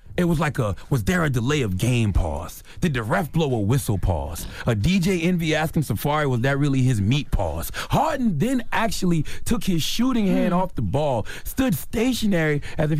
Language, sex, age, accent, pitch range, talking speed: English, male, 30-49, American, 100-155 Hz, 200 wpm